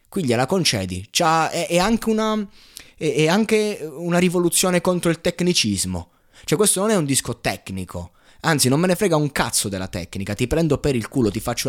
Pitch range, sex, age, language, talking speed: 110-160 Hz, male, 20-39, Italian, 200 wpm